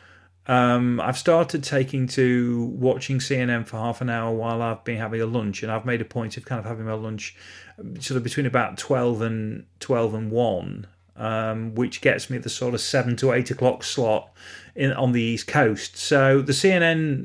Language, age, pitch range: English, 30-49, 110-135 Hz